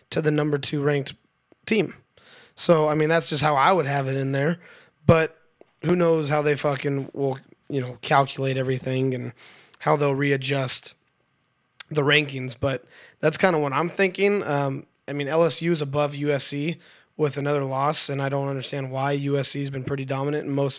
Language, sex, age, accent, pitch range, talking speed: English, male, 20-39, American, 140-155 Hz, 185 wpm